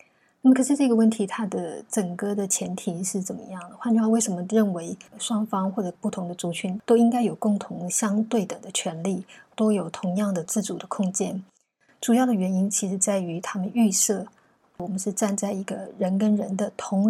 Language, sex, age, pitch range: Chinese, female, 20-39, 195-230 Hz